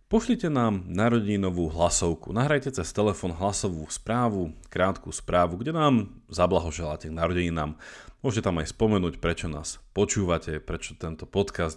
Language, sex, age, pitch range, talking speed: Slovak, male, 30-49, 80-105 Hz, 135 wpm